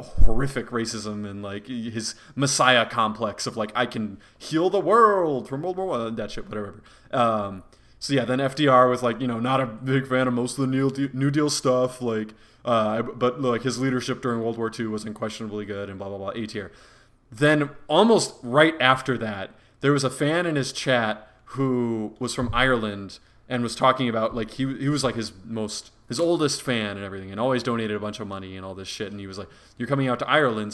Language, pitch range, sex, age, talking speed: English, 110-140 Hz, male, 20-39, 220 wpm